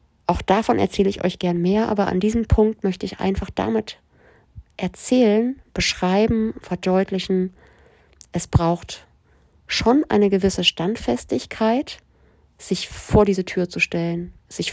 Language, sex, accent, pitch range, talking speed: German, female, German, 170-205 Hz, 125 wpm